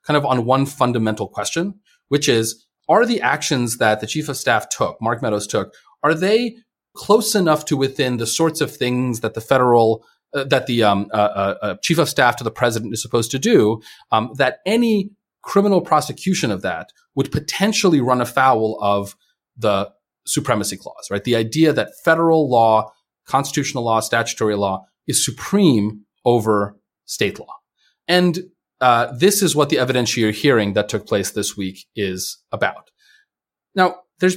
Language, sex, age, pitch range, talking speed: English, male, 30-49, 105-160 Hz, 170 wpm